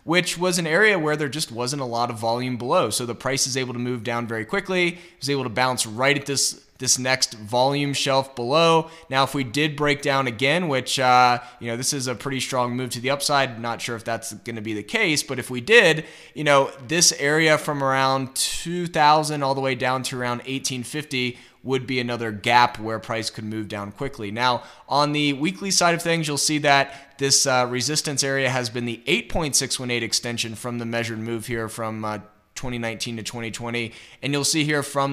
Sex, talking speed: male, 215 wpm